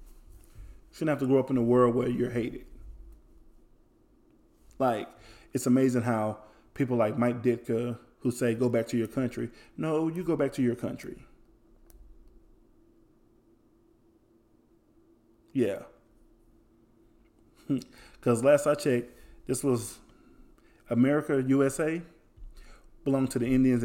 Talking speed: 120 wpm